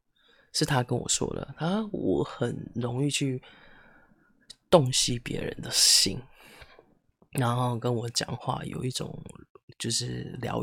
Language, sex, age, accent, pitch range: Chinese, male, 20-39, native, 120-150 Hz